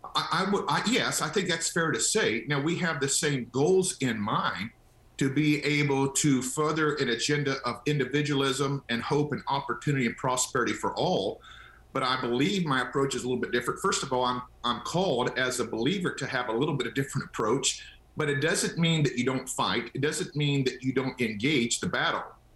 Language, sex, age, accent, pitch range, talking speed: English, male, 50-69, American, 125-155 Hz, 200 wpm